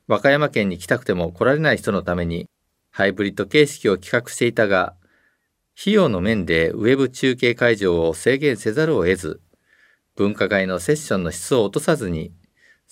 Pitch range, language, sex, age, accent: 90-140 Hz, Japanese, male, 50-69, native